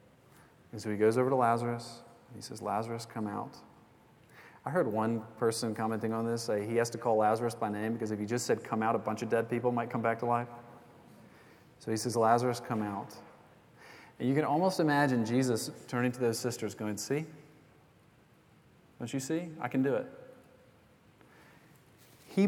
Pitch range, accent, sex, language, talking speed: 110-140 Hz, American, male, English, 190 wpm